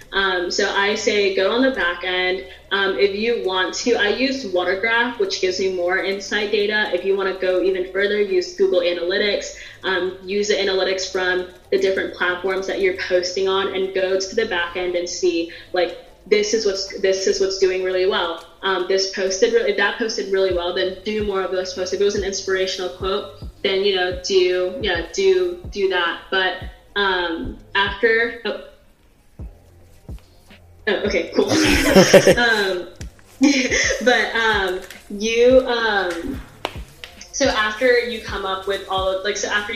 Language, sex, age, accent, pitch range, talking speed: English, female, 20-39, American, 185-205 Hz, 170 wpm